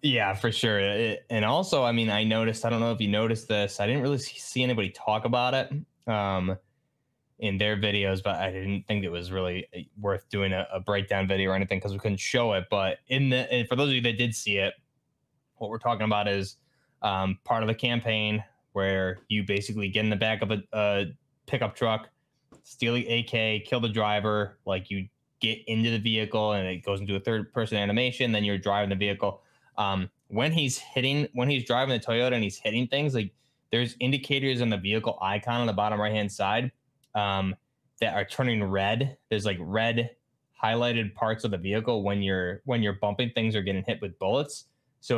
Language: English